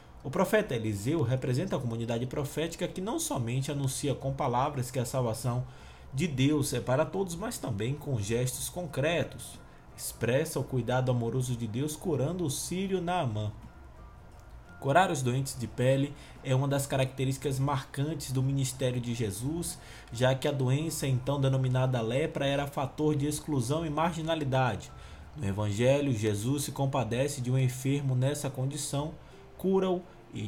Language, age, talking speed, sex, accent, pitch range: Portuguese, 20-39, 150 wpm, male, Brazilian, 125-150 Hz